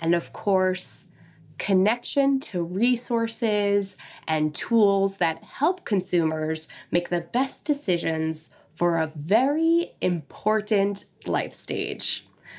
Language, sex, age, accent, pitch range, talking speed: English, female, 20-39, American, 175-225 Hz, 100 wpm